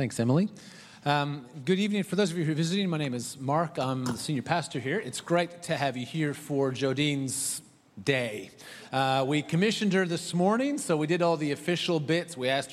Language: English